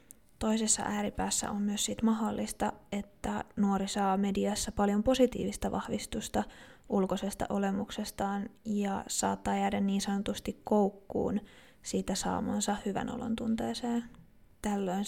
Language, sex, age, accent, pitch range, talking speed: Finnish, female, 20-39, native, 195-215 Hz, 105 wpm